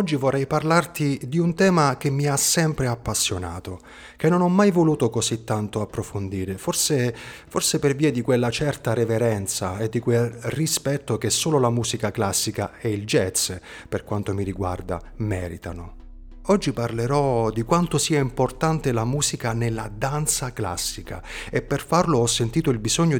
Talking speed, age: 160 wpm, 30-49